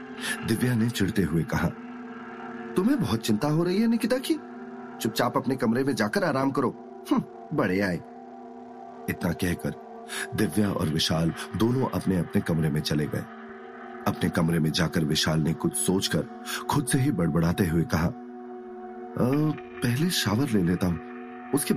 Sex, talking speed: male, 105 wpm